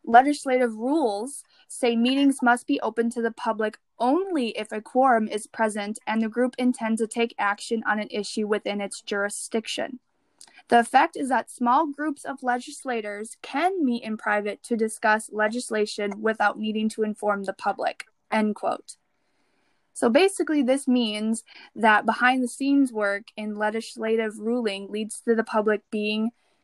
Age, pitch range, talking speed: 10-29, 215-265 Hz, 150 wpm